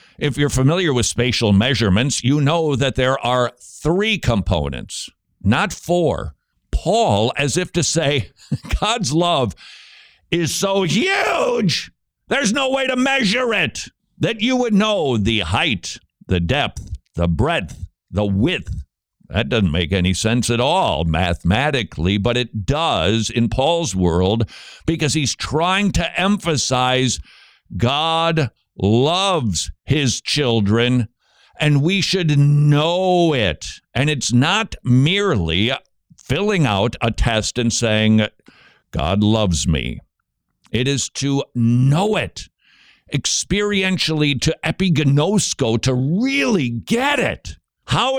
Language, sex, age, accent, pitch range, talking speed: English, male, 60-79, American, 105-165 Hz, 120 wpm